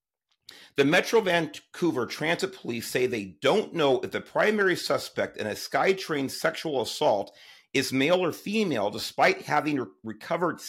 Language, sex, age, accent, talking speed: English, male, 40-59, American, 140 wpm